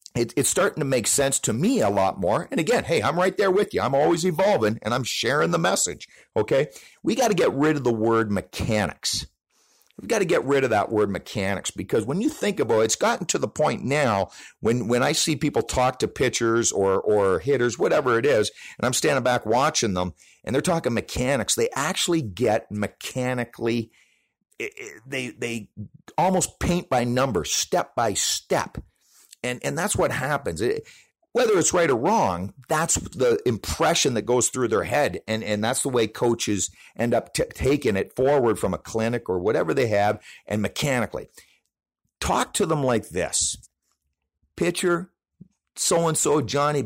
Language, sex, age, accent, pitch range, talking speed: English, male, 50-69, American, 105-150 Hz, 185 wpm